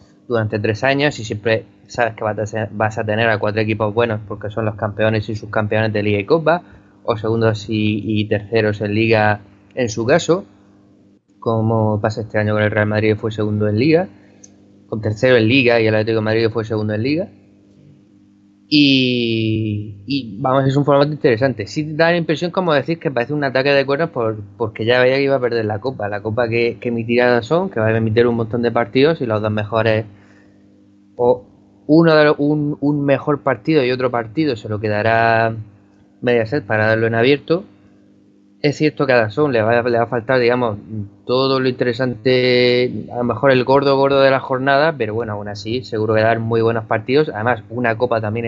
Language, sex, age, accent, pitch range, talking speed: Spanish, male, 20-39, Spanish, 105-125 Hz, 205 wpm